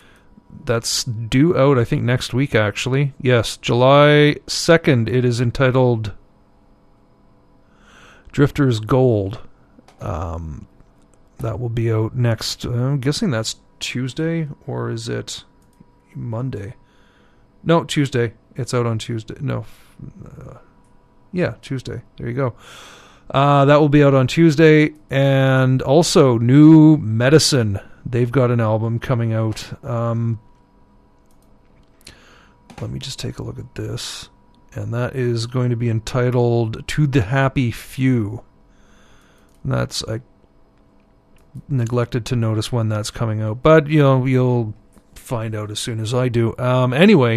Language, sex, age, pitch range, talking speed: English, male, 40-59, 115-140 Hz, 130 wpm